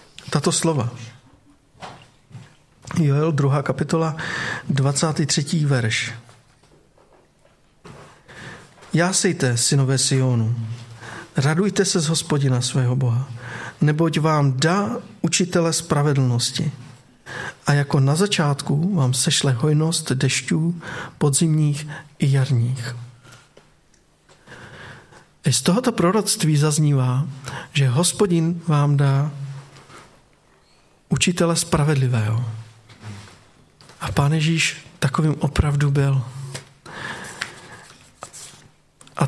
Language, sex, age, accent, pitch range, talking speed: Czech, male, 50-69, native, 135-165 Hz, 75 wpm